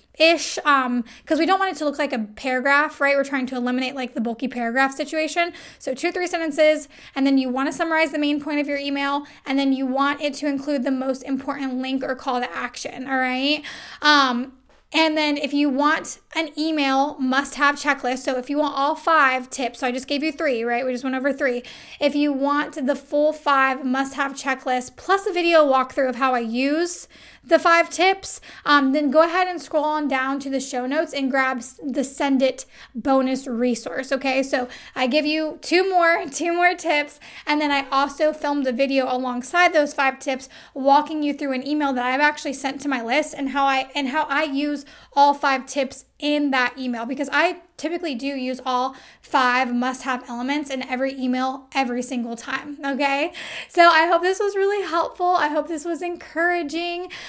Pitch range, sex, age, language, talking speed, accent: 265-310 Hz, female, 10-29, English, 205 wpm, American